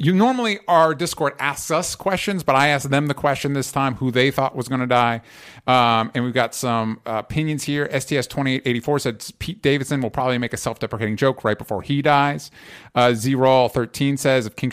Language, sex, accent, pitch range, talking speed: English, male, American, 115-145 Hz, 230 wpm